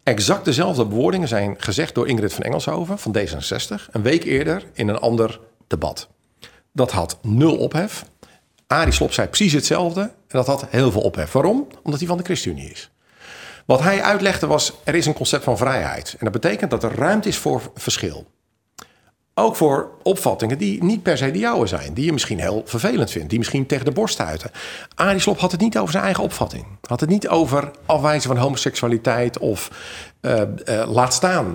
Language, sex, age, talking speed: Dutch, male, 50-69, 195 wpm